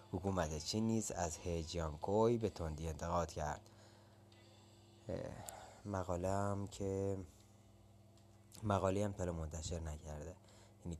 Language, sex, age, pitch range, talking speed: Persian, male, 20-39, 90-110 Hz, 100 wpm